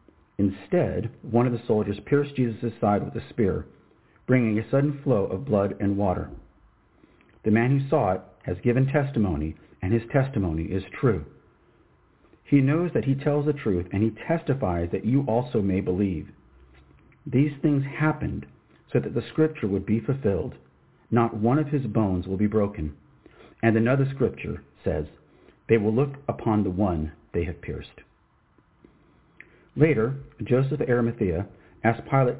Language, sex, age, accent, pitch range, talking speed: English, male, 40-59, American, 90-130 Hz, 155 wpm